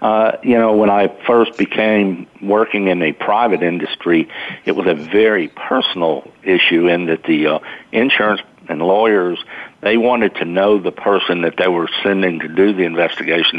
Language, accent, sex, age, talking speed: English, American, male, 50-69, 170 wpm